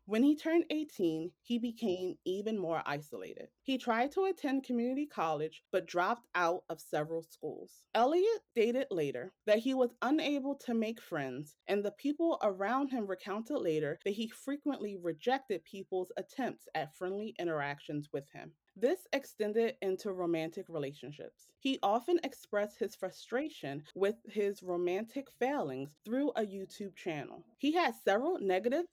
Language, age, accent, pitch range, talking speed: English, 30-49, American, 170-245 Hz, 145 wpm